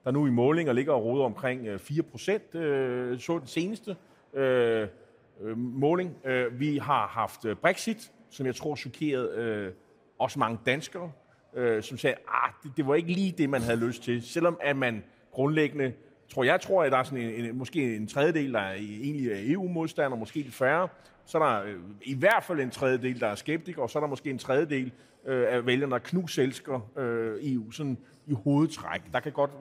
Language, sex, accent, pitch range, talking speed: Danish, male, native, 125-160 Hz, 195 wpm